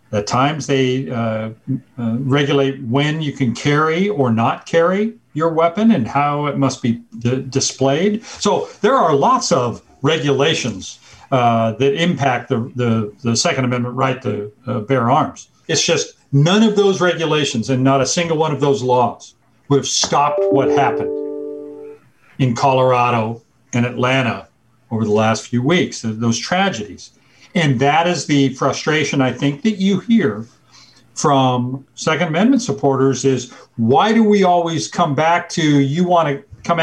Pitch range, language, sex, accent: 125-155 Hz, English, male, American